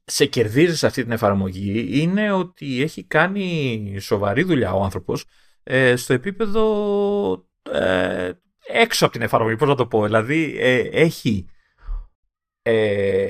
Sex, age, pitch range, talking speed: male, 30-49, 115-170 Hz, 130 wpm